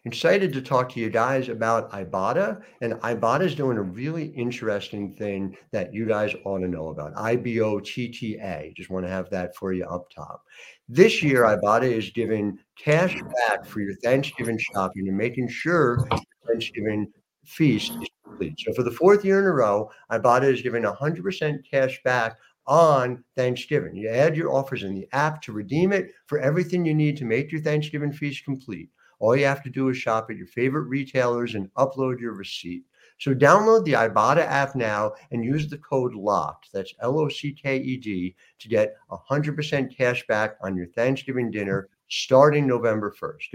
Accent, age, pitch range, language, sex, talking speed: American, 60-79, 105-140 Hz, English, male, 175 wpm